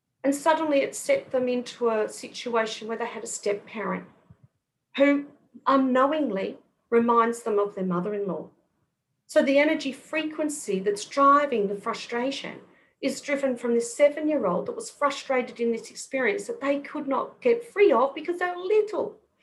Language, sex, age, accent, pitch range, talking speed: English, female, 40-59, Australian, 205-290 Hz, 160 wpm